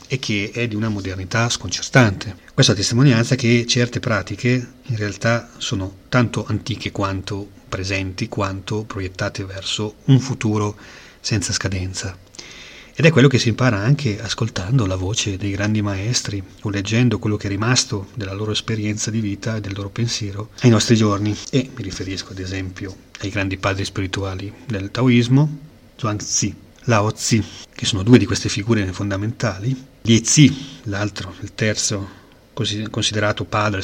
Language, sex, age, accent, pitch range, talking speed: Italian, male, 30-49, native, 100-120 Hz, 155 wpm